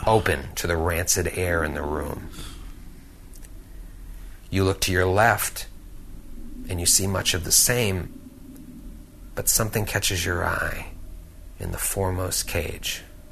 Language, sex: English, male